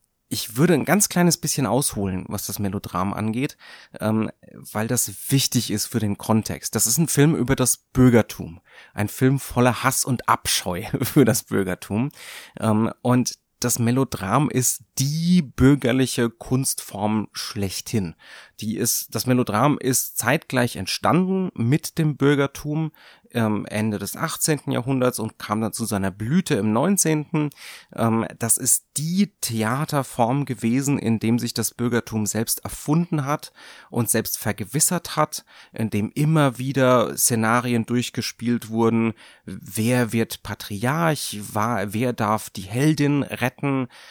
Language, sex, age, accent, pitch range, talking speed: German, male, 30-49, German, 110-135 Hz, 130 wpm